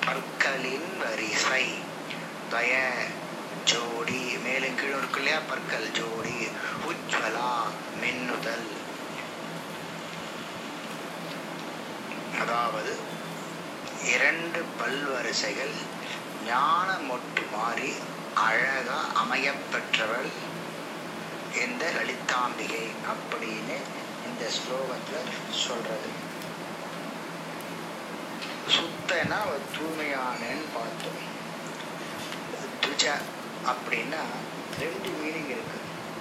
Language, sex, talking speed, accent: Tamil, male, 35 wpm, native